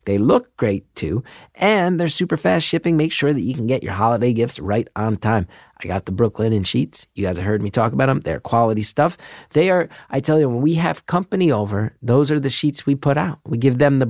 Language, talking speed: English, 250 wpm